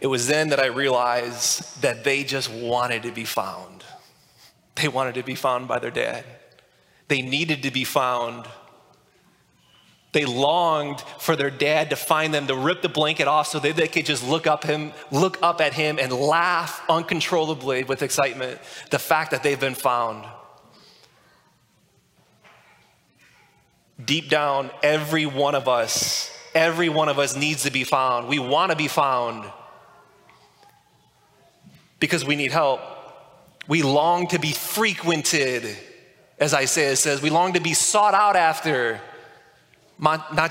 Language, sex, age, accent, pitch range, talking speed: English, male, 20-39, American, 135-160 Hz, 145 wpm